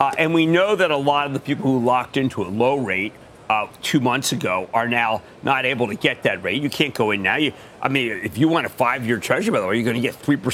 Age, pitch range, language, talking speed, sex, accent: 50-69, 120-170 Hz, English, 275 wpm, male, American